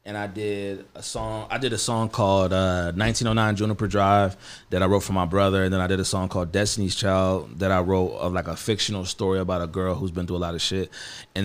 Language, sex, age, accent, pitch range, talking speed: English, male, 30-49, American, 90-110 Hz, 250 wpm